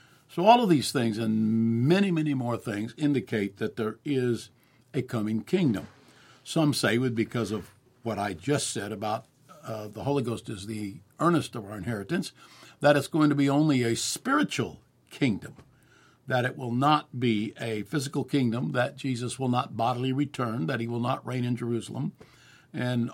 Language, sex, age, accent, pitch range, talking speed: English, male, 60-79, American, 115-140 Hz, 175 wpm